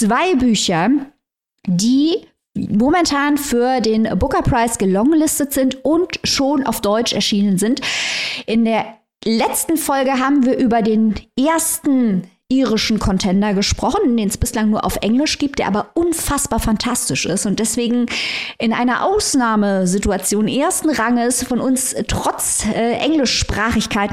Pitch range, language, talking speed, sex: 215-275 Hz, German, 130 wpm, female